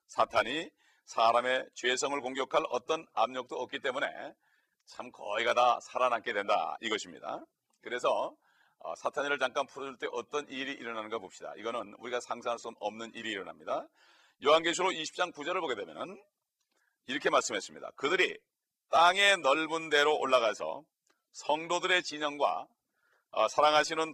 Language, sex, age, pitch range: Korean, male, 40-59, 120-150 Hz